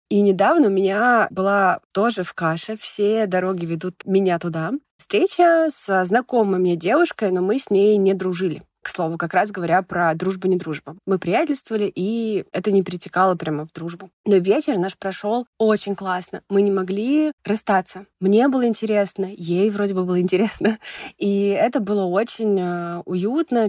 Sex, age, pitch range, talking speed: female, 20-39, 185-230 Hz, 160 wpm